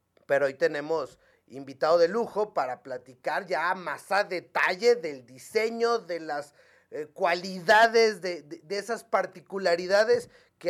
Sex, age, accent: male, 40-59, Mexican